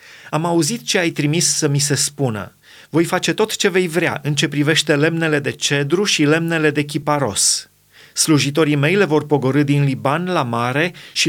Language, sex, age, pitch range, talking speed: Romanian, male, 30-49, 140-165 Hz, 185 wpm